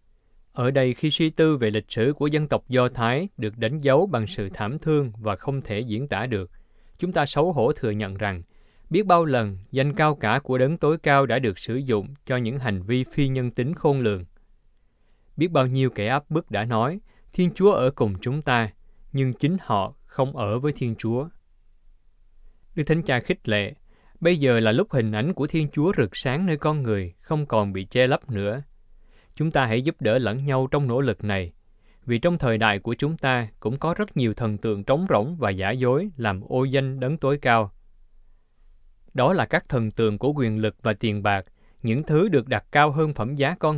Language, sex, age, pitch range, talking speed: Vietnamese, male, 20-39, 105-140 Hz, 215 wpm